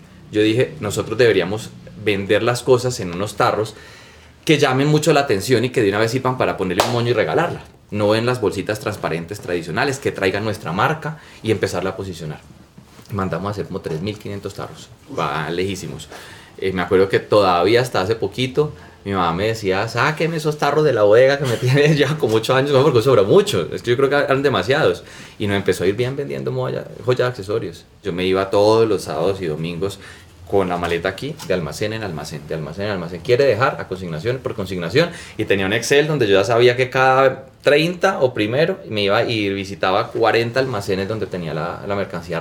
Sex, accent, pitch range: male, Colombian, 95-135 Hz